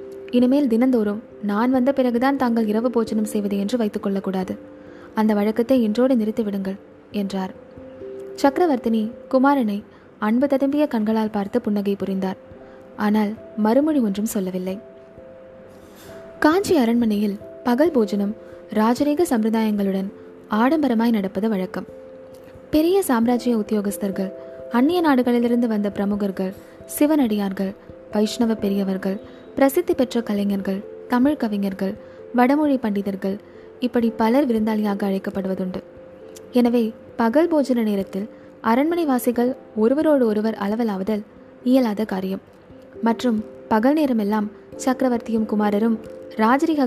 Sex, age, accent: female, 20-39, native